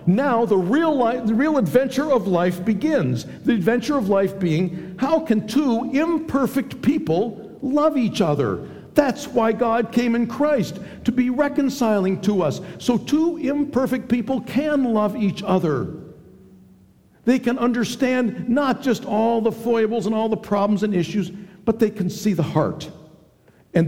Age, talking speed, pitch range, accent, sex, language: 60-79, 155 wpm, 155-225 Hz, American, male, English